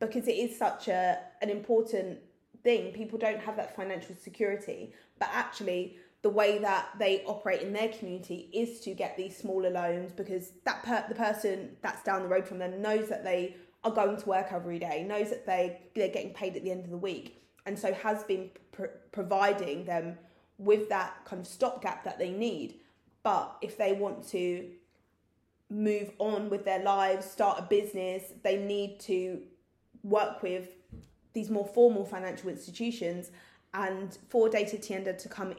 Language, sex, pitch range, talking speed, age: English, female, 180-210 Hz, 180 wpm, 20-39